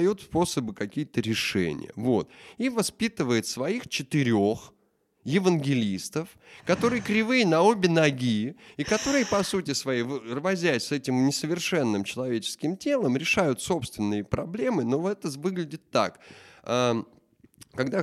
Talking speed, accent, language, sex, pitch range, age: 110 wpm, native, Russian, male, 95-155 Hz, 30-49